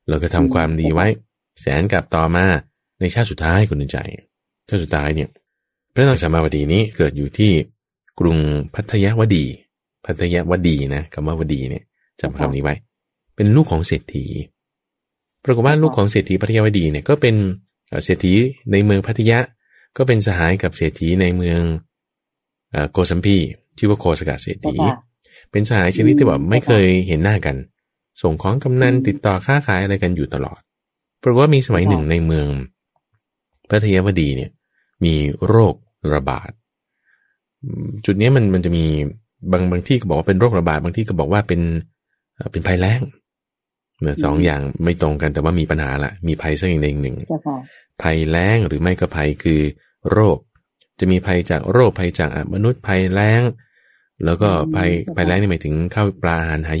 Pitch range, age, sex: 80-105 Hz, 20-39, male